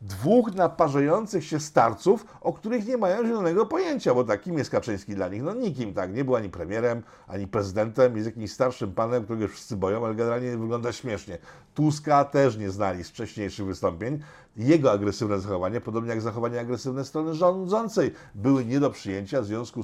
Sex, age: male, 50-69